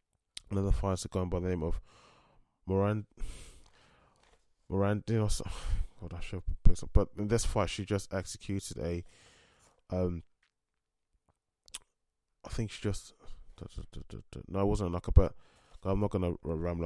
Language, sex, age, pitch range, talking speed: English, male, 20-39, 85-100 Hz, 165 wpm